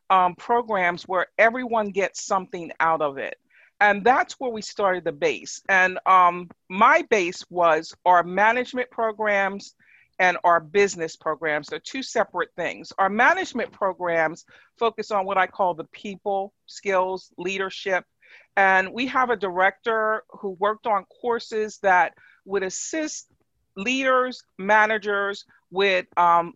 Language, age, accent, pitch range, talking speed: English, 40-59, American, 185-225 Hz, 135 wpm